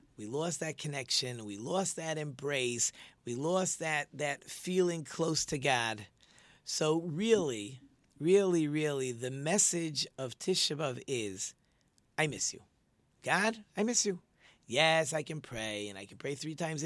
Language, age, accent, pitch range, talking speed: English, 40-59, American, 135-175 Hz, 150 wpm